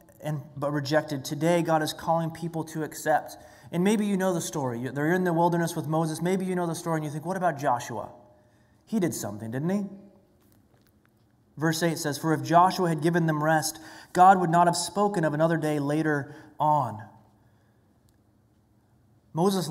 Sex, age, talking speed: male, 30-49, 180 wpm